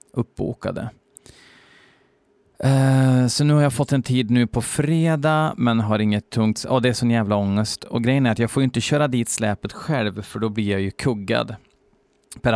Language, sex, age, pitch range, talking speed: Swedish, male, 30-49, 105-125 Hz, 190 wpm